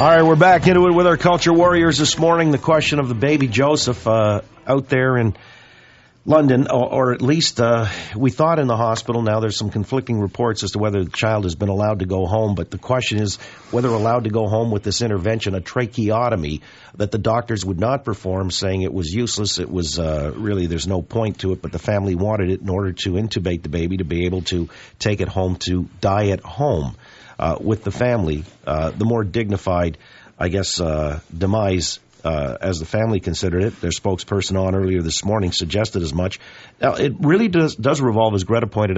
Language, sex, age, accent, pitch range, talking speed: English, male, 50-69, American, 95-115 Hz, 215 wpm